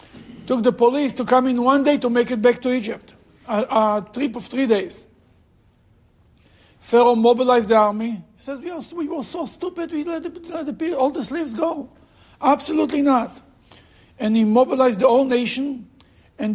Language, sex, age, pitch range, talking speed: English, male, 60-79, 210-265 Hz, 170 wpm